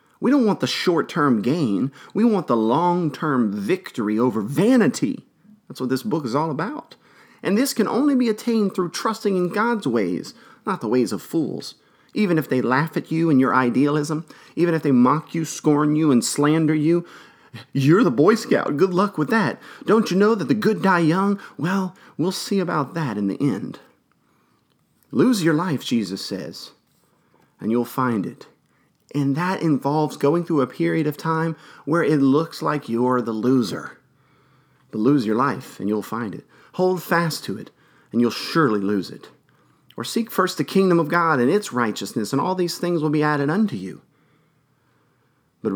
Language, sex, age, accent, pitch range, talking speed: English, male, 40-59, American, 130-185 Hz, 185 wpm